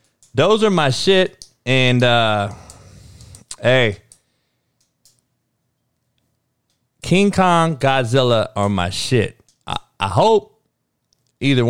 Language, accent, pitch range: English, American, 110-135 Hz